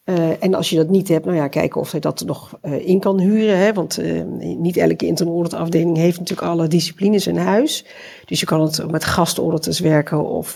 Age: 50-69